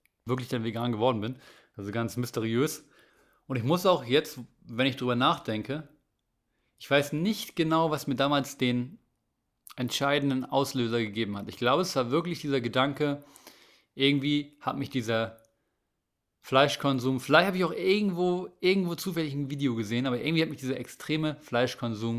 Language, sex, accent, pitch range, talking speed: German, male, German, 120-145 Hz, 155 wpm